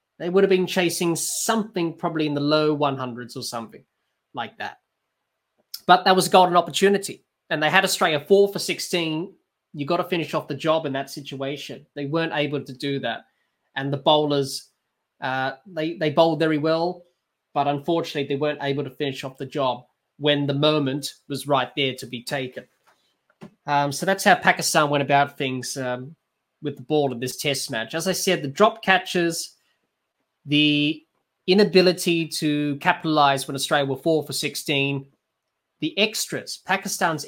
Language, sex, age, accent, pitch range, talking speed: English, male, 20-39, Australian, 140-180 Hz, 170 wpm